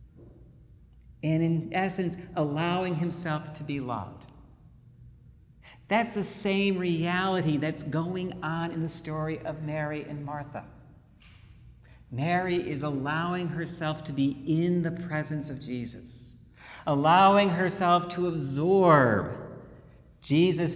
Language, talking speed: English, 110 wpm